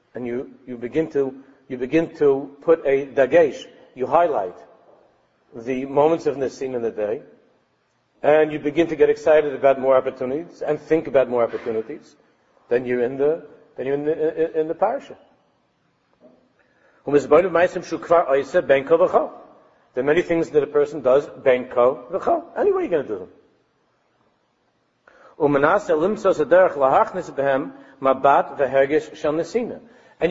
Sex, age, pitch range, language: male, 50-69, 145-220 Hz, English